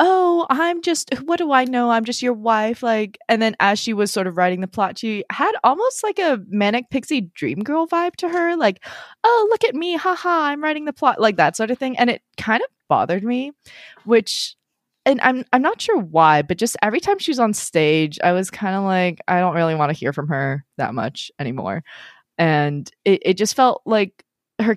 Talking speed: 225 wpm